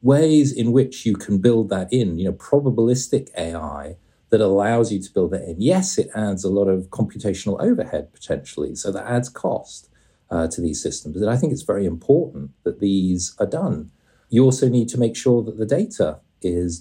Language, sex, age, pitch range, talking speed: English, male, 40-59, 95-125 Hz, 200 wpm